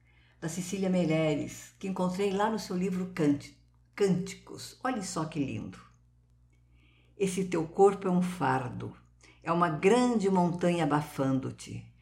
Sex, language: female, Portuguese